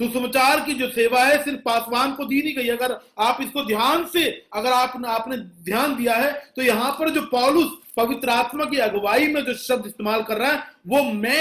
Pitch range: 250-315 Hz